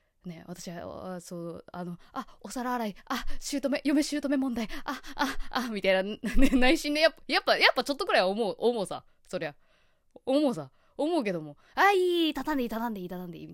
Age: 20-39